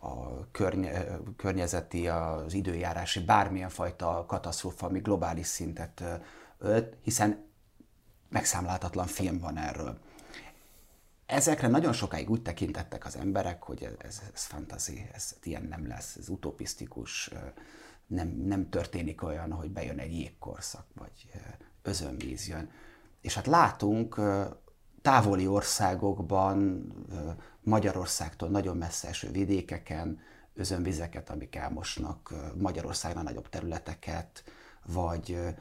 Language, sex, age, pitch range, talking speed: Hungarian, male, 30-49, 85-105 Hz, 105 wpm